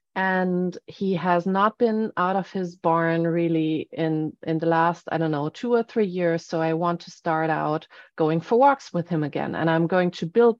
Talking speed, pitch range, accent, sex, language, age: 215 wpm, 170-195 Hz, German, female, English, 30-49